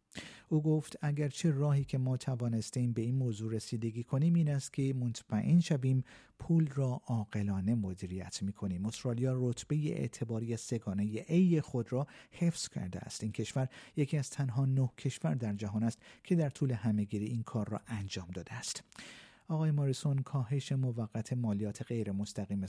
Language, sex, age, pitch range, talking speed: Persian, male, 50-69, 110-140 Hz, 160 wpm